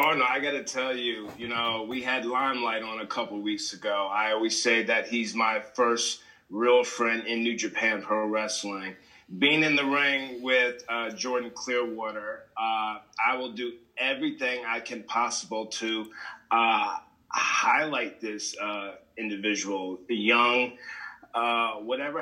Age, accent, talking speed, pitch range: 30-49, American, 155 wpm, 115-130 Hz